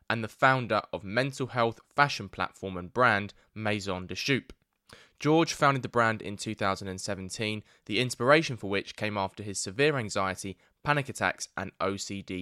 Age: 10-29